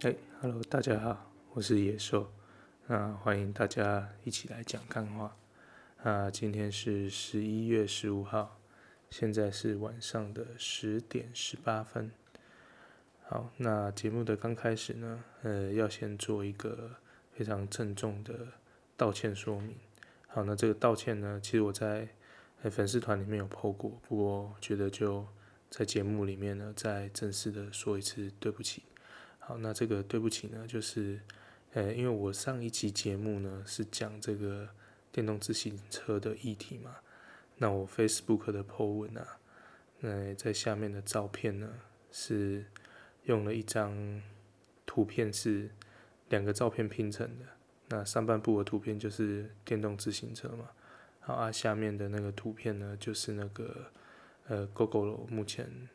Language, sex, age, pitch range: Chinese, male, 10-29, 100-115 Hz